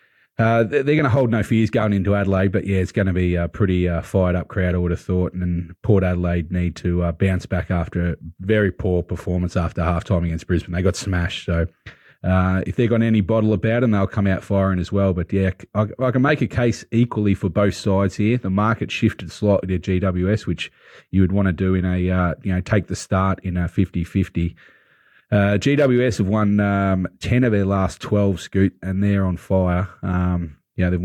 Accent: Australian